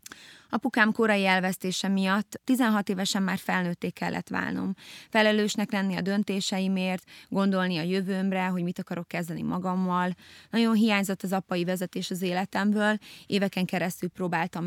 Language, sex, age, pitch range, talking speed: Hungarian, female, 20-39, 190-220 Hz, 130 wpm